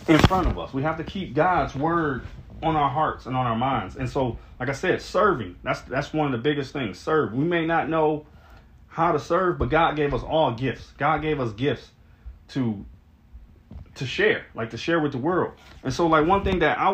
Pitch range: 110-150 Hz